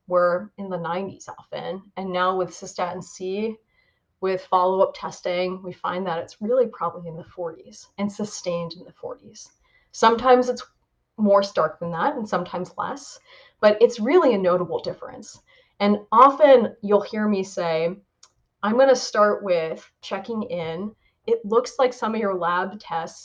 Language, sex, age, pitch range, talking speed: English, female, 30-49, 180-225 Hz, 160 wpm